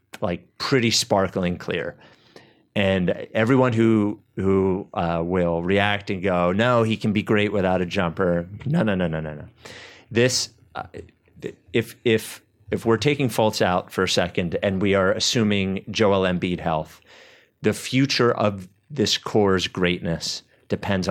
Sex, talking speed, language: male, 150 wpm, English